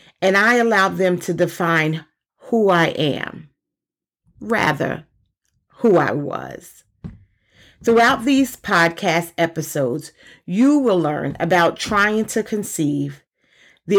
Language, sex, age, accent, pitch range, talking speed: English, female, 40-59, American, 160-210 Hz, 105 wpm